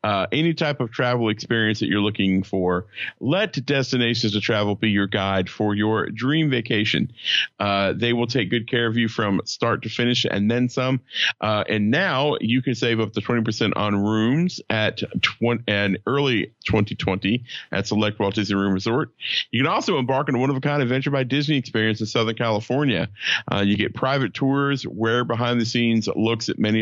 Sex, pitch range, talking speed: male, 105-130 Hz, 195 wpm